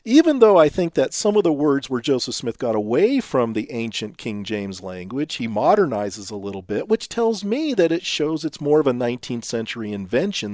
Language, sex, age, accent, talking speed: English, male, 40-59, American, 215 wpm